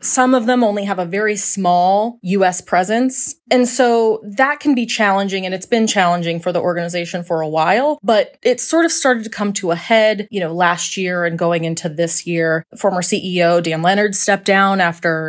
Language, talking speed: English, 205 wpm